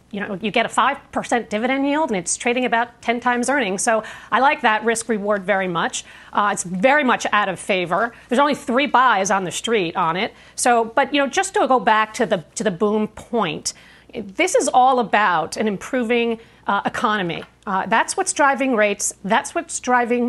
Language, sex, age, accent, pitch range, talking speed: English, female, 40-59, American, 215-265 Hz, 205 wpm